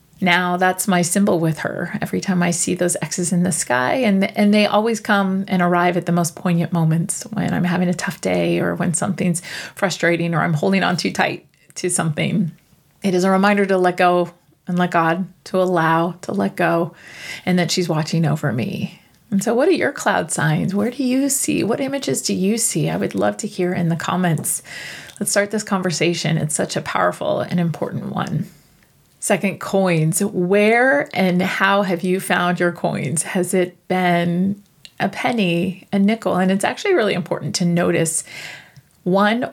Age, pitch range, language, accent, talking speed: 30-49, 170-200 Hz, English, American, 190 wpm